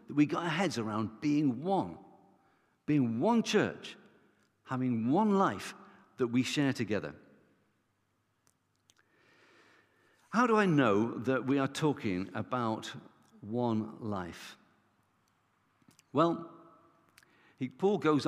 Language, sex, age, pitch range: English, male, 50-69, 120-180 Hz